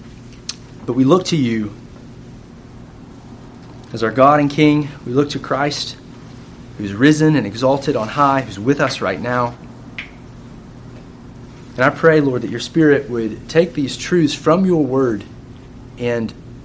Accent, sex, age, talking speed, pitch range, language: American, male, 30-49, 145 wpm, 120-140 Hz, English